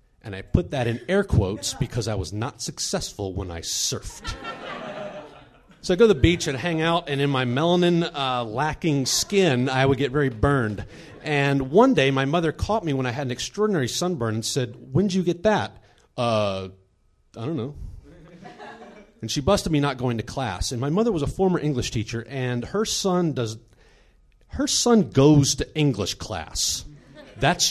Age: 40-59